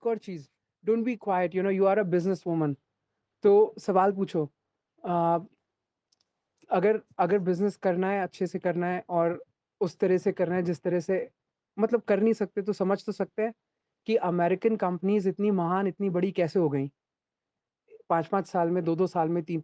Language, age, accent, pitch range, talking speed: Hindi, 30-49, native, 170-200 Hz, 165 wpm